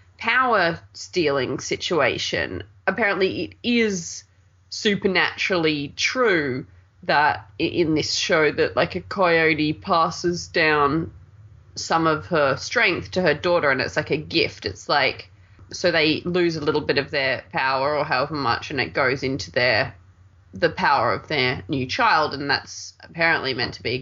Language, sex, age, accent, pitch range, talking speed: English, female, 20-39, Australian, 105-175 Hz, 155 wpm